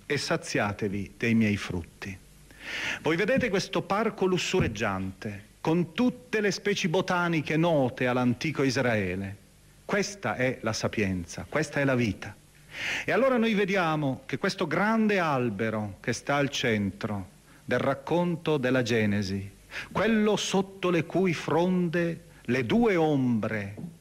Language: Italian